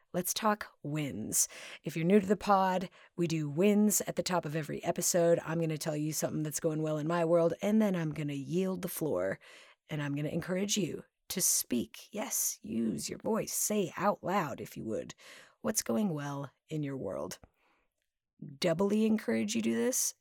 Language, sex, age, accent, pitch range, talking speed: English, female, 30-49, American, 155-190 Hz, 200 wpm